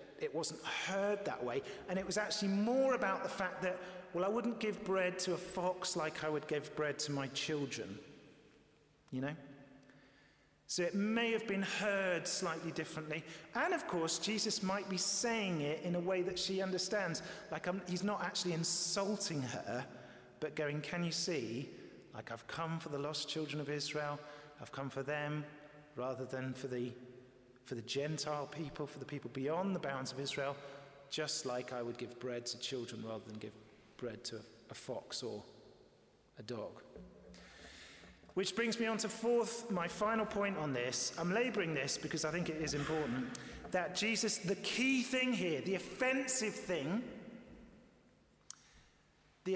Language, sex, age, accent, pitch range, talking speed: English, male, 40-59, British, 140-195 Hz, 170 wpm